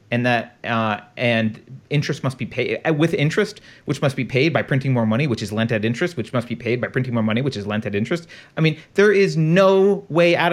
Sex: male